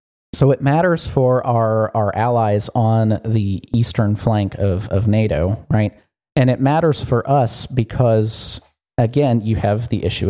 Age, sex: 30-49, male